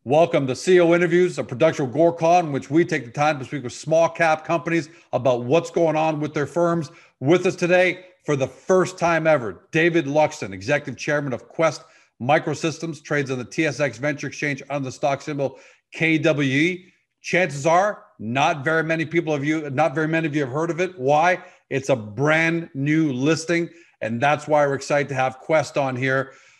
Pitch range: 135-165 Hz